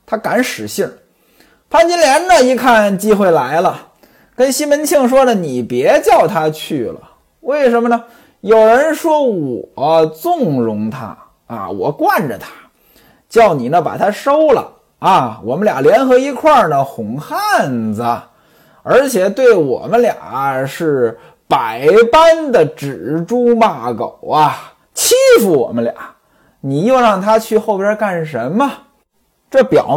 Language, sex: Chinese, male